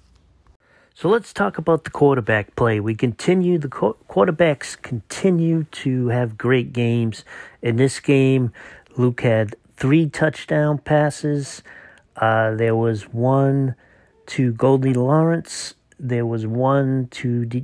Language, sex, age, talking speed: English, male, 40-59, 120 wpm